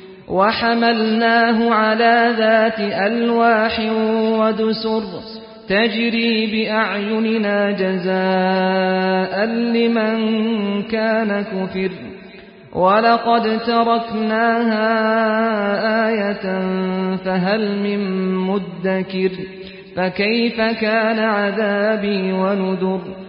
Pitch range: 195-225 Hz